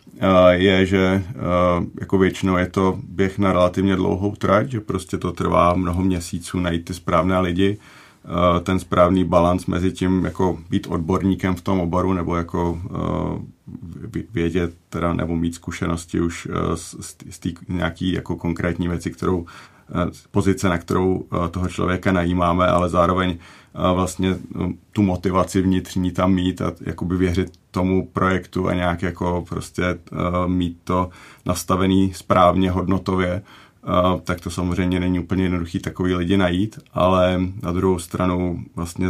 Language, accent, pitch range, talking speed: Czech, native, 90-95 Hz, 140 wpm